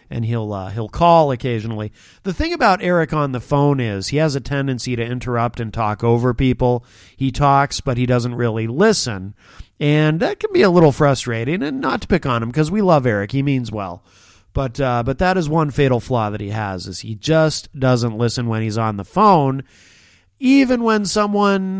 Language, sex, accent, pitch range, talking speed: English, male, American, 115-185 Hz, 205 wpm